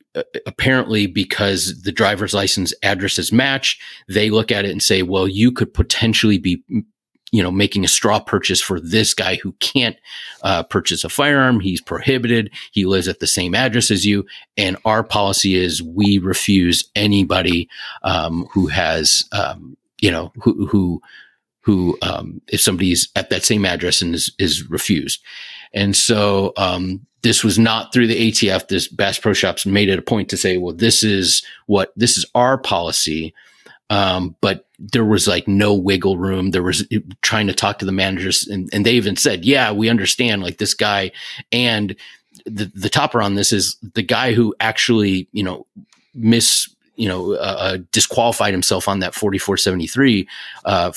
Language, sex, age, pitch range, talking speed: English, male, 30-49, 95-115 Hz, 175 wpm